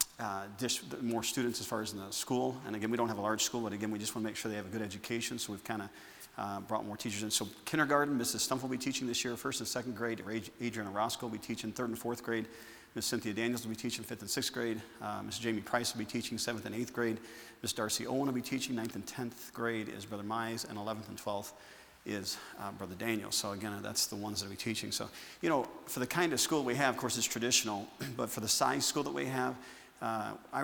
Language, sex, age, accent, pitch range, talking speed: English, male, 40-59, American, 105-120 Hz, 265 wpm